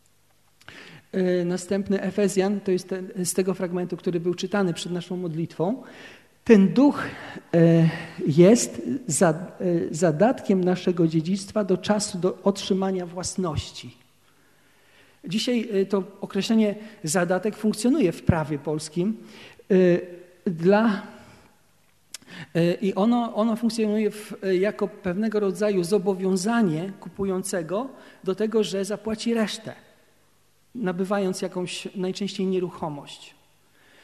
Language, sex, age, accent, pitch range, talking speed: Polish, male, 50-69, native, 180-210 Hz, 95 wpm